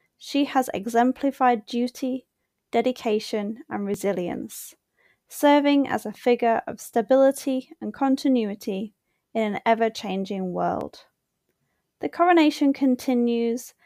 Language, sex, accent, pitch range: English, female, British, 215-270 Hz